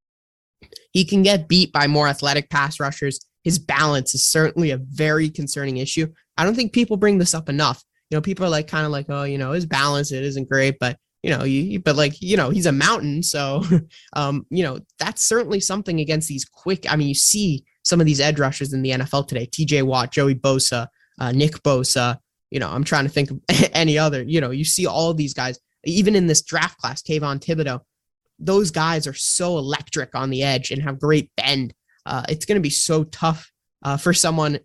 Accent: American